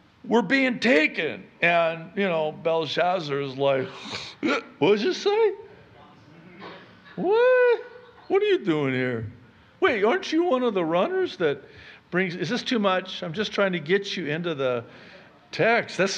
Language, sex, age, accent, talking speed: English, male, 60-79, American, 155 wpm